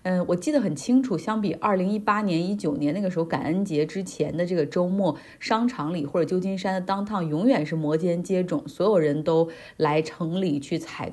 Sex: female